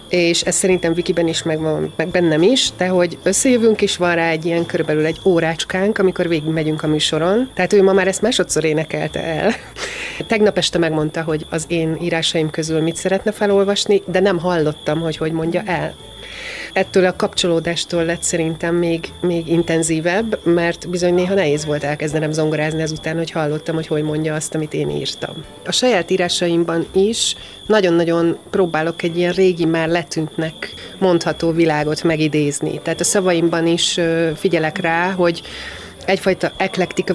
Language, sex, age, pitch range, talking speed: English, female, 30-49, 160-190 Hz, 160 wpm